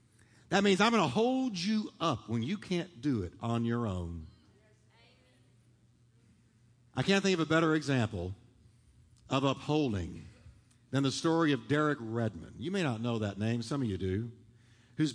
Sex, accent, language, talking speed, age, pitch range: male, American, English, 165 wpm, 50-69, 115-180 Hz